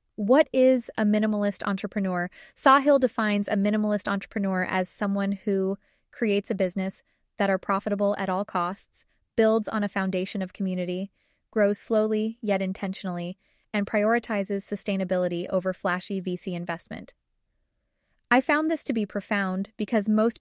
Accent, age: American, 20-39